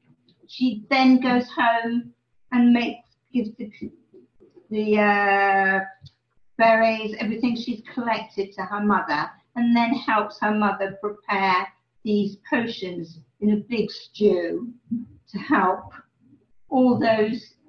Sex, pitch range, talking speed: female, 195-255 Hz, 110 wpm